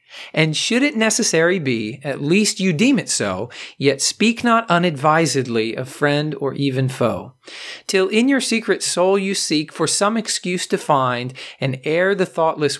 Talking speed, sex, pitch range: 170 wpm, male, 135-190 Hz